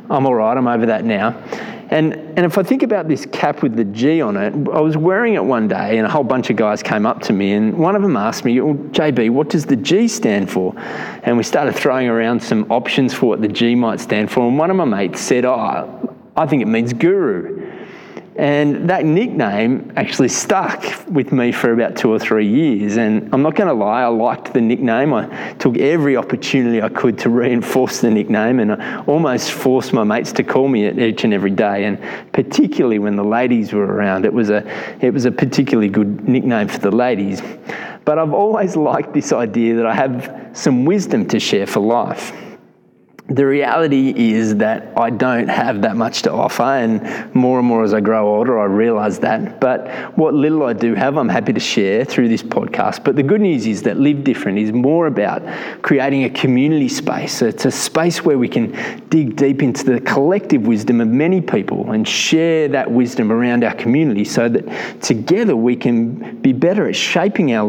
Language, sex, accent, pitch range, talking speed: English, male, Australian, 115-160 Hz, 210 wpm